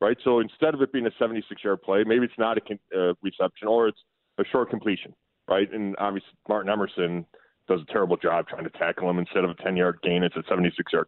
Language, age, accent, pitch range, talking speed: English, 40-59, American, 105-130 Hz, 220 wpm